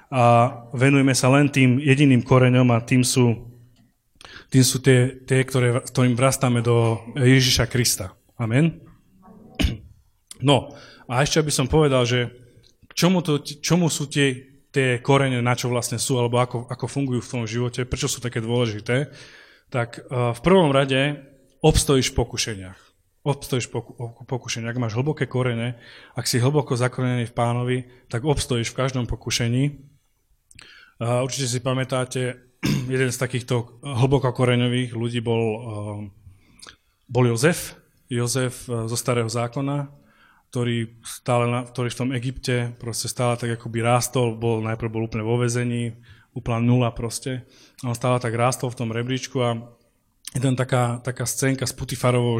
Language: Slovak